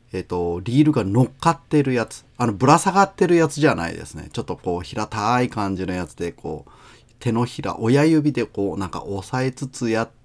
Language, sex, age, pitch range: Japanese, male, 30-49, 105-145 Hz